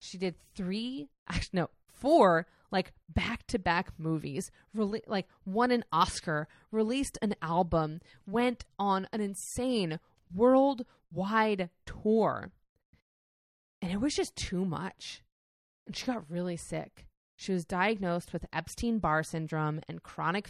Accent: American